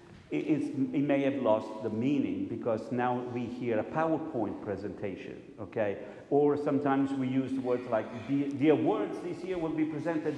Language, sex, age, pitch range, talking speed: English, male, 50-69, 110-155 Hz, 170 wpm